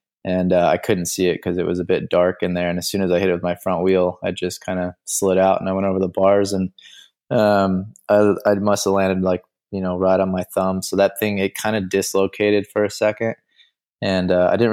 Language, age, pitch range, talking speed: English, 20-39, 95-100 Hz, 260 wpm